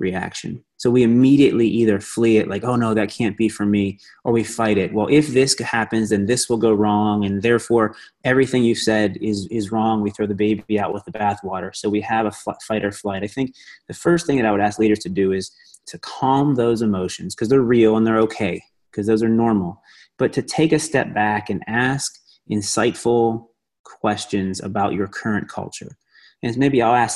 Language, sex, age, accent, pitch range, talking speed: English, male, 30-49, American, 105-120 Hz, 210 wpm